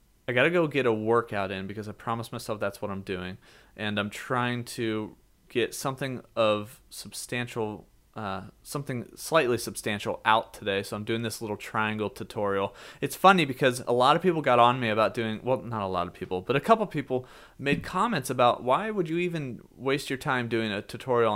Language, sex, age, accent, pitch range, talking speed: English, male, 30-49, American, 110-150 Hz, 205 wpm